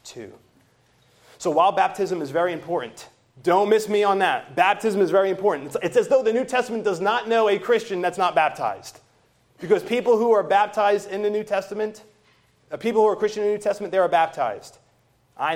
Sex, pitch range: male, 125-200 Hz